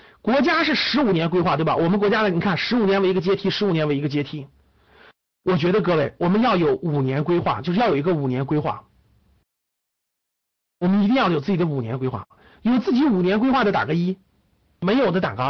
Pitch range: 155-225 Hz